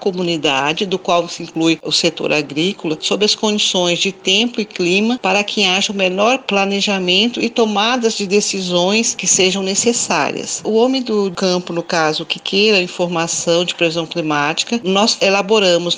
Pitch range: 175-210 Hz